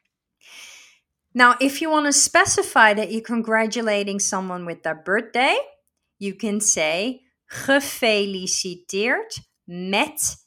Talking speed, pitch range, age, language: 105 wpm, 195-255 Hz, 30-49, Dutch